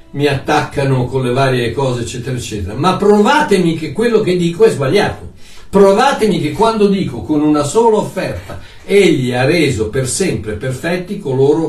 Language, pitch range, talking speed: Italian, 110-165 Hz, 160 wpm